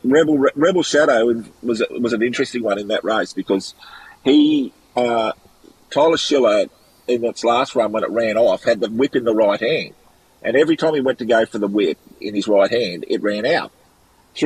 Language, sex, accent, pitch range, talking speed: English, male, Australian, 115-150 Hz, 200 wpm